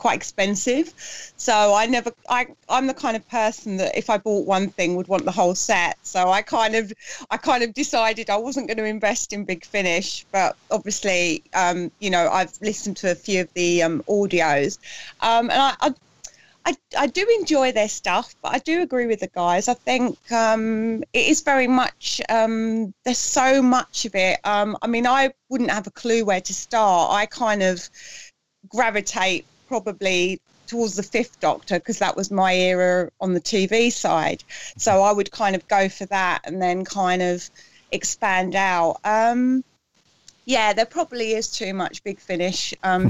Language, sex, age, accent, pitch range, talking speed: English, female, 30-49, British, 190-235 Hz, 190 wpm